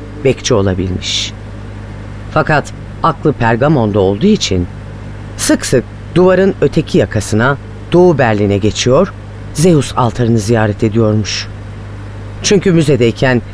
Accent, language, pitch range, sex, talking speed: native, Turkish, 100-145 Hz, female, 95 wpm